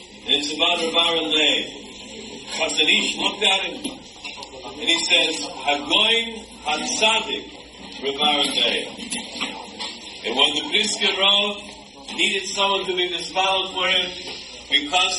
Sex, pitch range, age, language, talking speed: male, 175-200 Hz, 50-69, English, 105 wpm